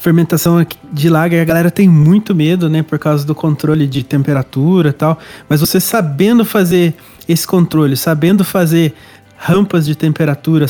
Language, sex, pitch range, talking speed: Portuguese, male, 145-180 Hz, 155 wpm